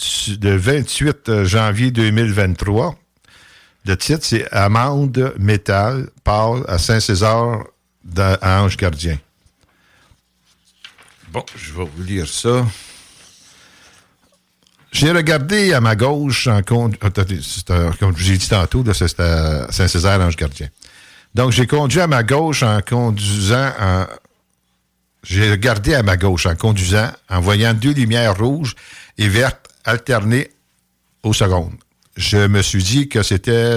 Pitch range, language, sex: 95-125 Hz, French, male